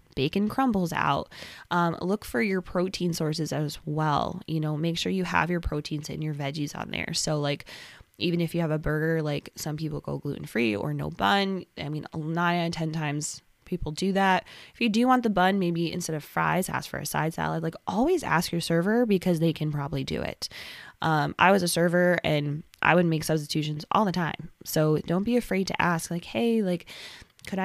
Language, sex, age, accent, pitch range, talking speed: English, female, 20-39, American, 150-180 Hz, 215 wpm